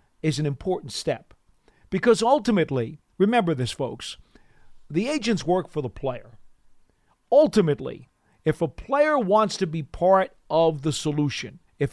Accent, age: American, 50-69